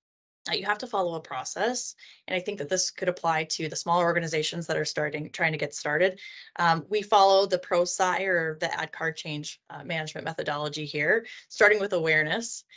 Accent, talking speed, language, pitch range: American, 195 wpm, English, 165-195 Hz